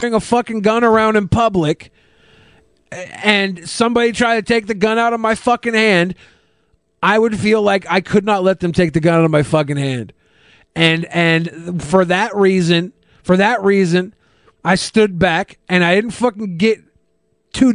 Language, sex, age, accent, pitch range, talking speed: English, male, 30-49, American, 175-220 Hz, 175 wpm